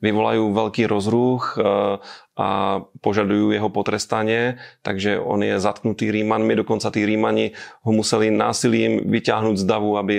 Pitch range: 105-110 Hz